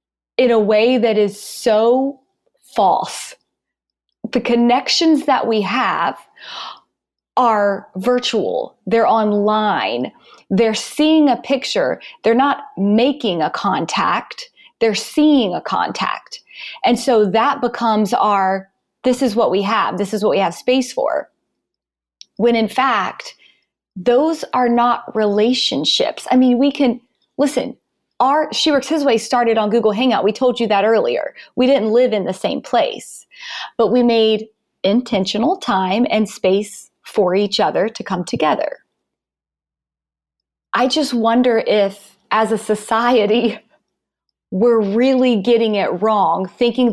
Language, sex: English, female